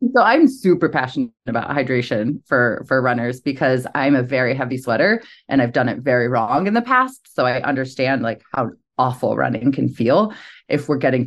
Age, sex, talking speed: 20-39, female, 190 wpm